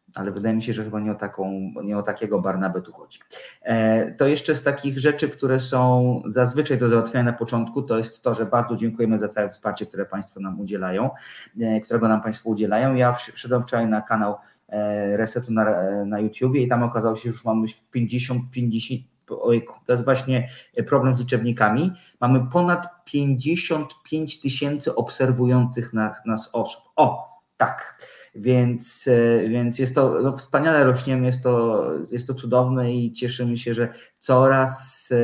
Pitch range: 110-130 Hz